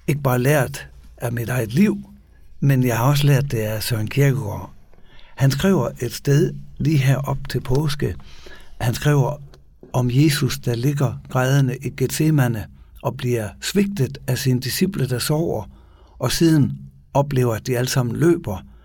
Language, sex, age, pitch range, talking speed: Danish, male, 60-79, 90-140 Hz, 155 wpm